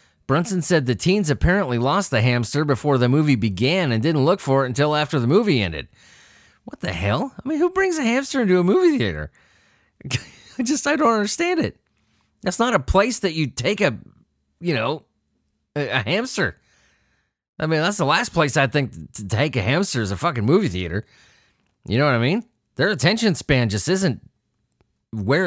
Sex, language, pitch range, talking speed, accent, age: male, English, 115-170 Hz, 190 wpm, American, 30-49